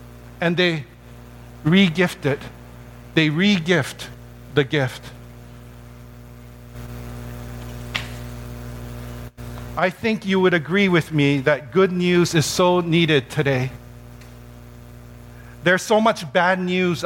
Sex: male